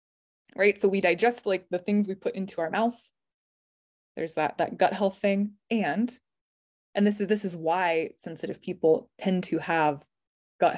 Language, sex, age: English, female, 20-39